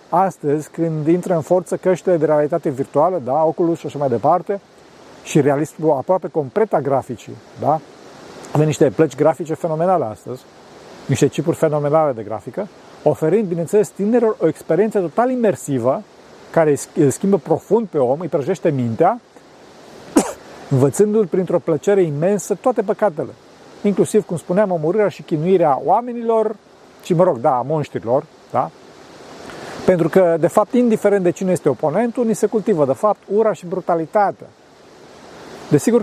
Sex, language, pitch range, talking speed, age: male, Romanian, 155-205 Hz, 145 wpm, 40-59